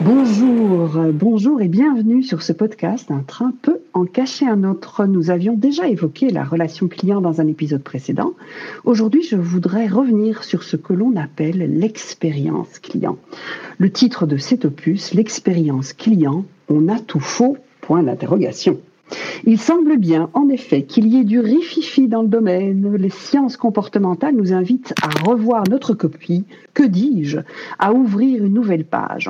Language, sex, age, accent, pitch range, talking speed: French, female, 60-79, French, 165-240 Hz, 160 wpm